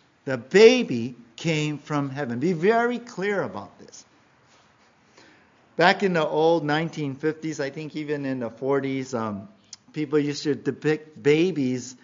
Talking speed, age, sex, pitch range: 135 wpm, 50-69, male, 130-175 Hz